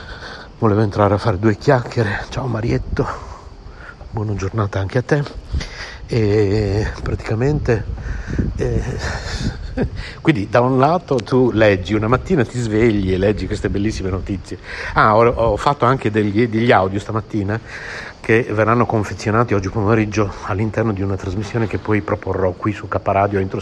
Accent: native